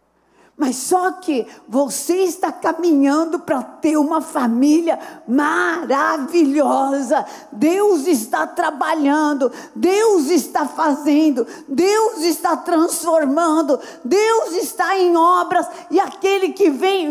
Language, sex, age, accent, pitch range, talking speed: Portuguese, female, 40-59, Brazilian, 315-370 Hz, 100 wpm